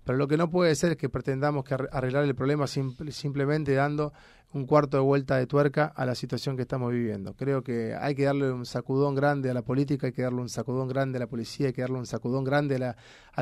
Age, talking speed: 30-49, 240 wpm